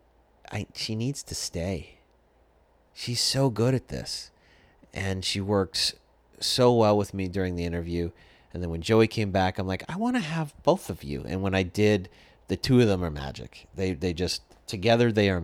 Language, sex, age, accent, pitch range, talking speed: English, male, 30-49, American, 75-100 Hz, 200 wpm